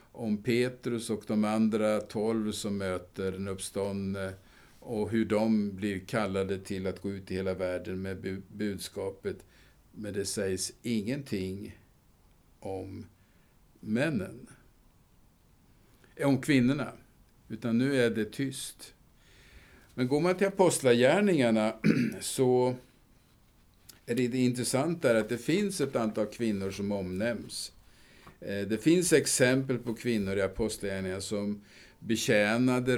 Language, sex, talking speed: Swedish, male, 120 wpm